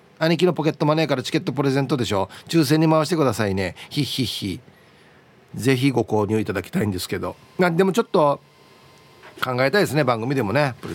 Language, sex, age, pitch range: Japanese, male, 40-59, 120-185 Hz